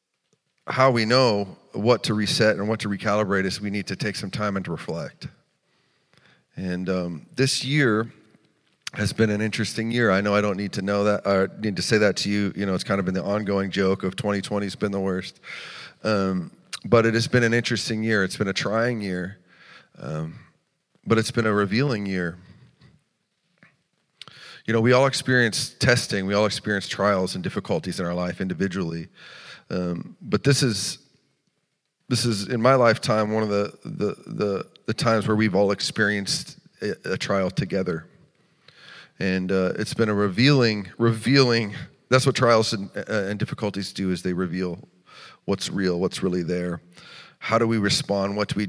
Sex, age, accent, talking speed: male, 40-59, American, 180 wpm